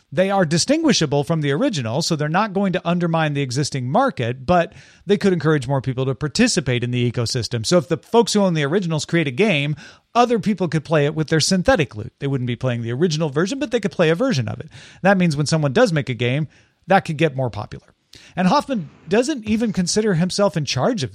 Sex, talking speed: male, 235 wpm